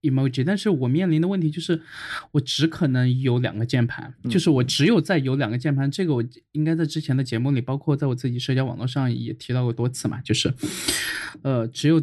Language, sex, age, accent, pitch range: Chinese, male, 20-39, native, 120-135 Hz